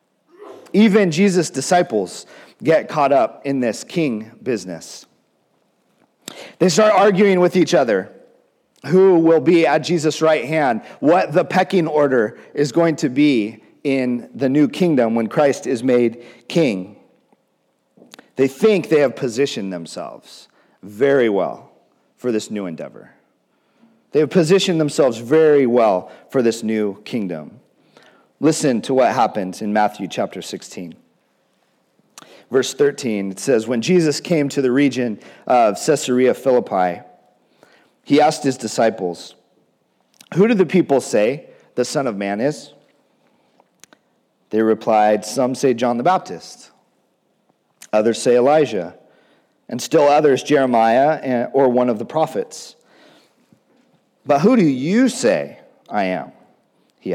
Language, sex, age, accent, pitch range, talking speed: English, male, 40-59, American, 115-165 Hz, 130 wpm